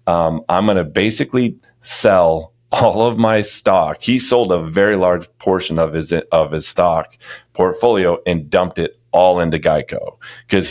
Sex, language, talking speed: male, English, 160 wpm